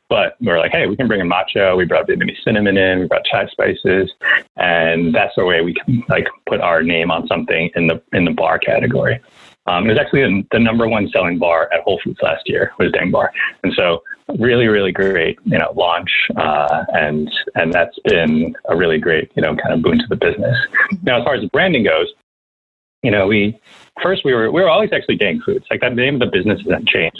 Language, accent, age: English, American, 30-49